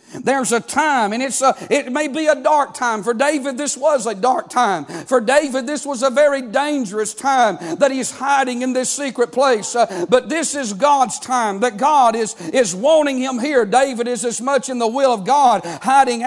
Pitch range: 220-275 Hz